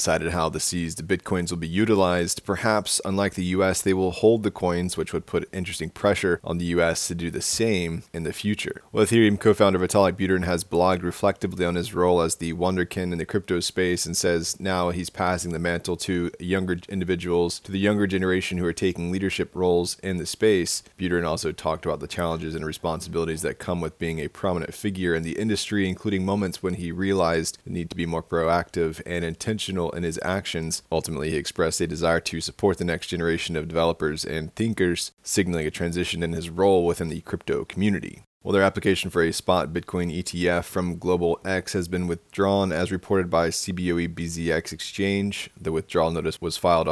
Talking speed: 200 wpm